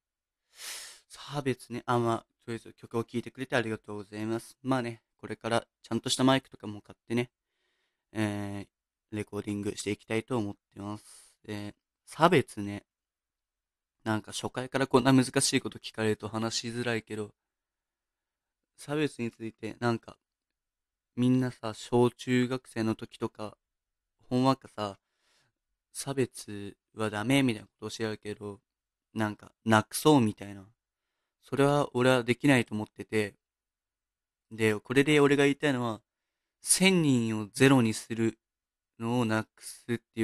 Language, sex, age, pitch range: Japanese, male, 20-39, 105-125 Hz